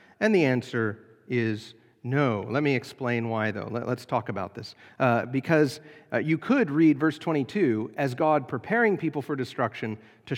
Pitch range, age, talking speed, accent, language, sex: 125-180 Hz, 40-59, 170 wpm, American, English, male